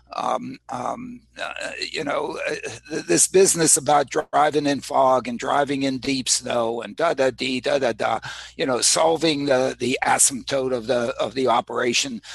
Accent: American